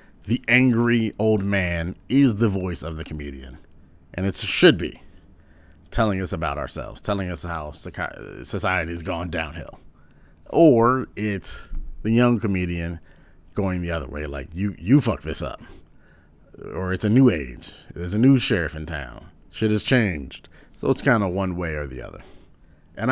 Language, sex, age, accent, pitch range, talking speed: English, male, 40-59, American, 80-100 Hz, 165 wpm